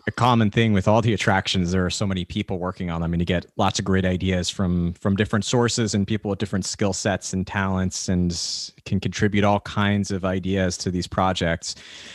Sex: male